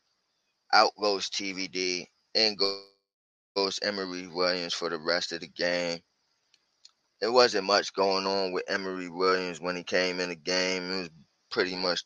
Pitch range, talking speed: 90-125 Hz, 155 wpm